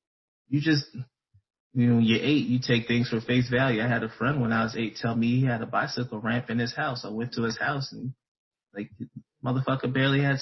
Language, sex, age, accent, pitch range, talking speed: English, male, 20-39, American, 105-125 Hz, 235 wpm